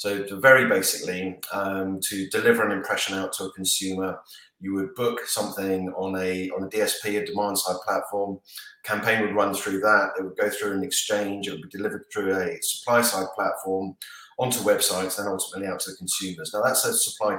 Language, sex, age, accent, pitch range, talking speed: English, male, 30-49, British, 95-105 Hz, 195 wpm